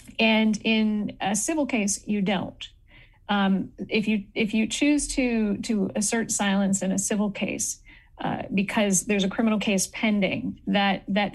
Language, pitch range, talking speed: English, 195-225 Hz, 160 wpm